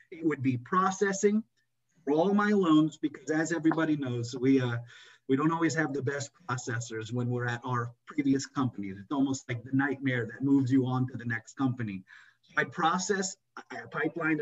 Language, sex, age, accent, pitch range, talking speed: English, male, 30-49, American, 135-175 Hz, 185 wpm